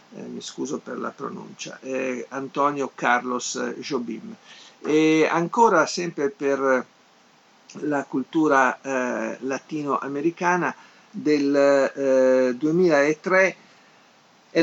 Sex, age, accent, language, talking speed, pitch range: male, 50-69, native, Italian, 90 wpm, 130-150 Hz